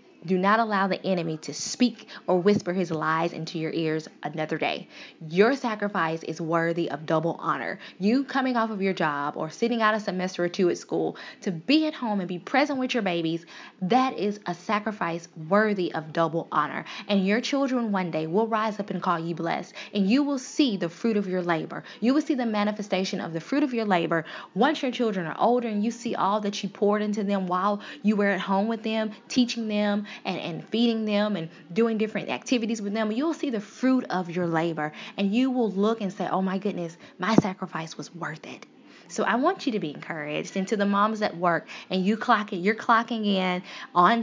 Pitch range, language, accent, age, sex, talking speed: 175-225 Hz, English, American, 20-39, female, 220 wpm